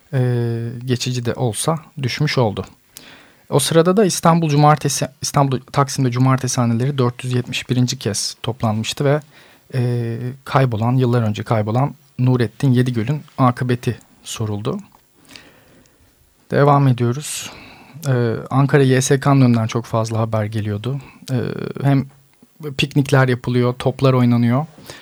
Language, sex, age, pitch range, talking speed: Turkish, male, 40-59, 120-135 Hz, 105 wpm